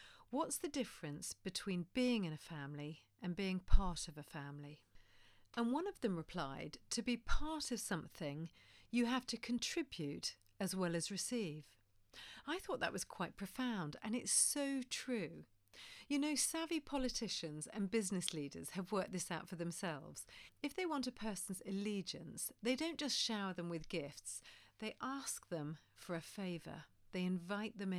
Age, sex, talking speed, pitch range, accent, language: 40-59, female, 165 wpm, 160-230 Hz, British, English